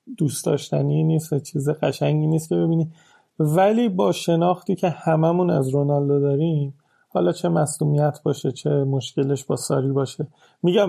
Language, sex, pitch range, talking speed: Persian, male, 145-175 Hz, 145 wpm